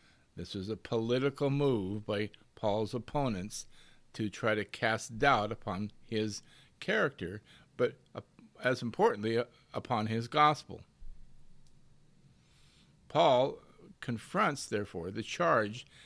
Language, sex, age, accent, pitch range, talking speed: English, male, 50-69, American, 105-145 Hz, 100 wpm